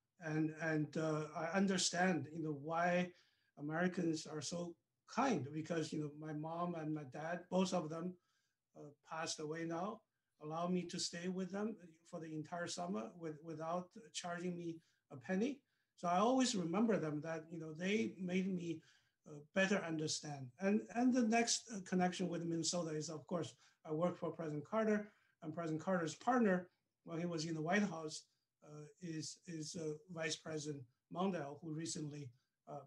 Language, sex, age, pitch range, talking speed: English, male, 50-69, 155-180 Hz, 170 wpm